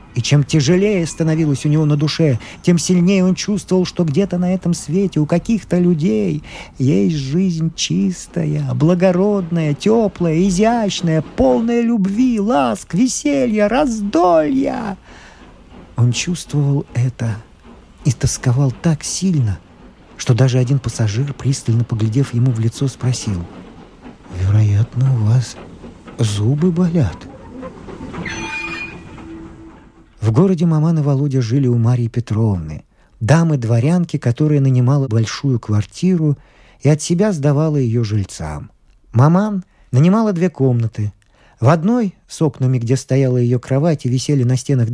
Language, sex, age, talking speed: Russian, male, 50-69, 120 wpm